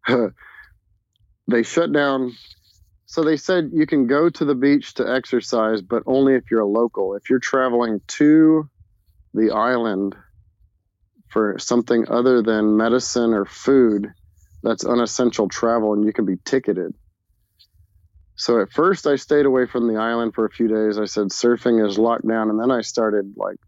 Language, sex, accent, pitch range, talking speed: English, male, American, 100-125 Hz, 165 wpm